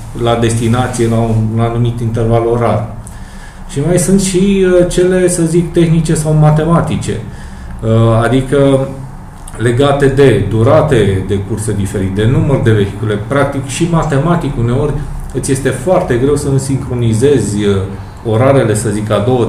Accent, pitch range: native, 110-140 Hz